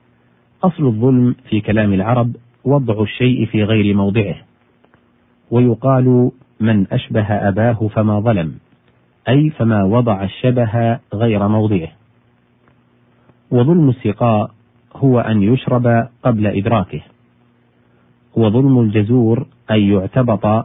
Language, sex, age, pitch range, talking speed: Arabic, male, 40-59, 100-125 Hz, 95 wpm